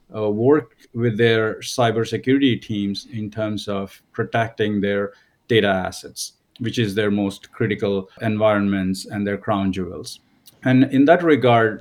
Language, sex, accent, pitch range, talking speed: English, male, Indian, 105-120 Hz, 135 wpm